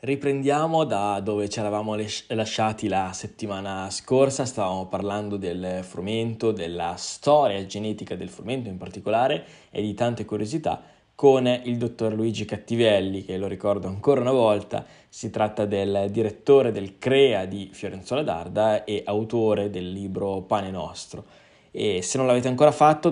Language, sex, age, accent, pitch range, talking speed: Italian, male, 10-29, native, 105-125 Hz, 150 wpm